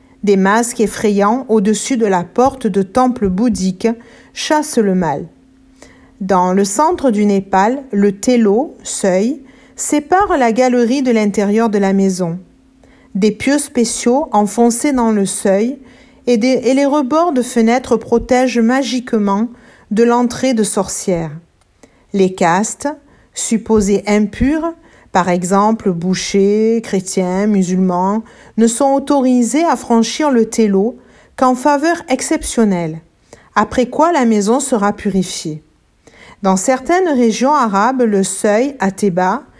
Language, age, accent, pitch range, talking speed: French, 50-69, French, 200-260 Hz, 125 wpm